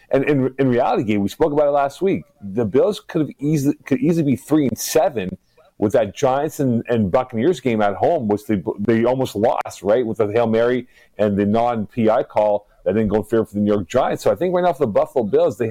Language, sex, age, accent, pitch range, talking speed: English, male, 40-59, American, 110-145 Hz, 250 wpm